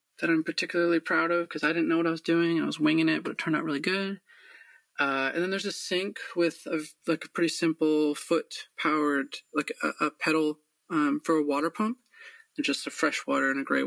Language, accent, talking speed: English, American, 235 wpm